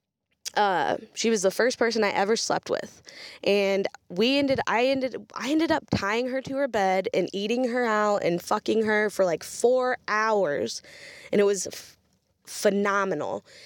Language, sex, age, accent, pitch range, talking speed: English, female, 10-29, American, 200-265 Hz, 170 wpm